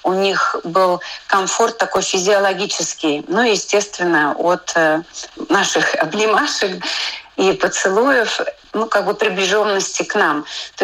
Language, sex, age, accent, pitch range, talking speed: Russian, female, 30-49, native, 170-195 Hz, 115 wpm